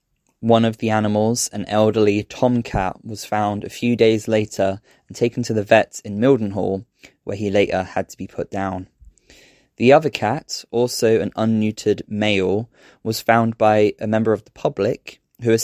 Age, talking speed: 20-39, 175 wpm